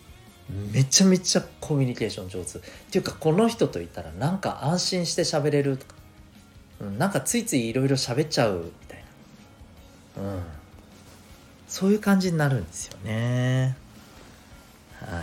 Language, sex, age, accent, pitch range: Japanese, male, 40-59, native, 95-150 Hz